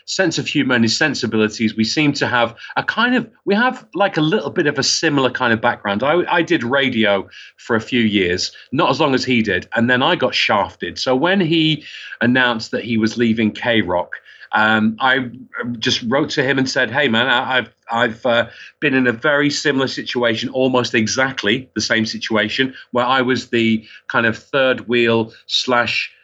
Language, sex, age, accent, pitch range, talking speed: English, male, 40-59, British, 110-130 Hz, 195 wpm